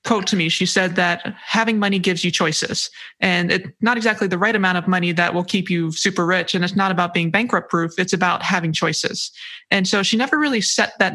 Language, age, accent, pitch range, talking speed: English, 20-39, American, 175-210 Hz, 235 wpm